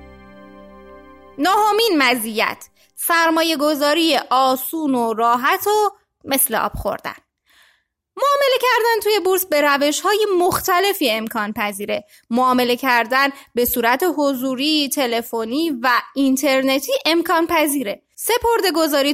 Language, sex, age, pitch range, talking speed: Persian, female, 20-39, 235-330 Hz, 100 wpm